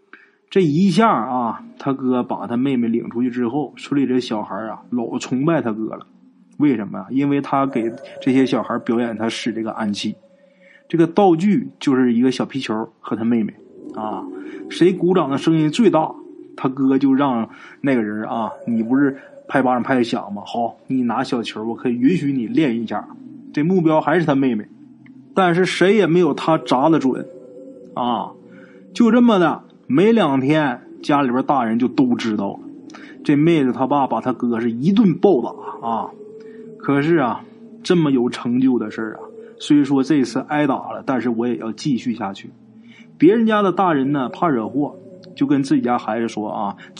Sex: male